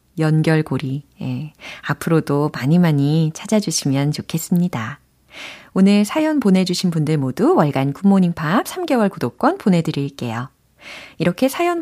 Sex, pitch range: female, 155-245 Hz